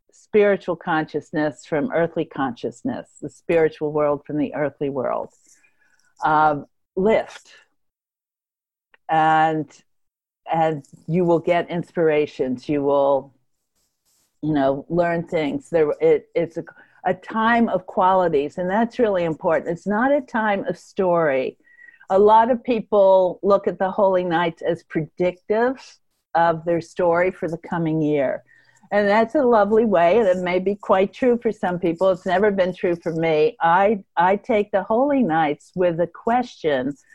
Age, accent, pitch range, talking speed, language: 50-69, American, 160-210 Hz, 145 wpm, English